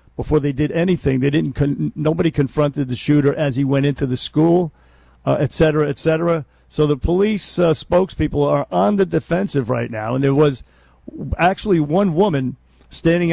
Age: 50-69